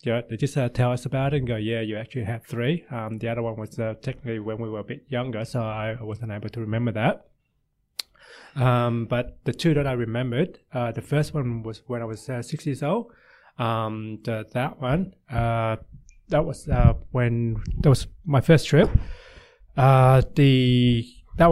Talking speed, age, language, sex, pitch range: 200 wpm, 20-39, English, male, 115-135 Hz